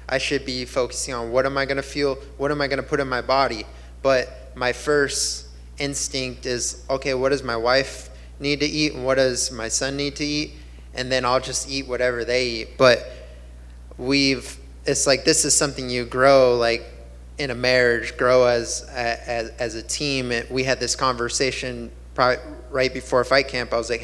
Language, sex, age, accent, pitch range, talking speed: English, male, 20-39, American, 115-135 Hz, 195 wpm